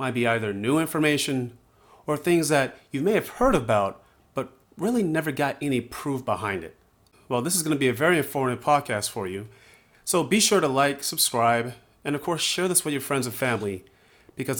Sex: male